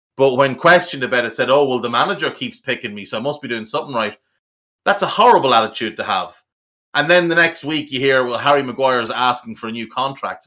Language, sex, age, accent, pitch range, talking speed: English, male, 30-49, Irish, 115-145 Hz, 240 wpm